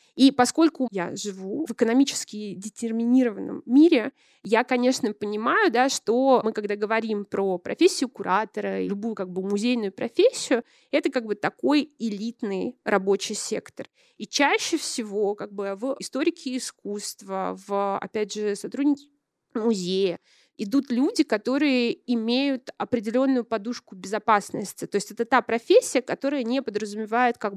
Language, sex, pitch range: Russian, female, 205-255 Hz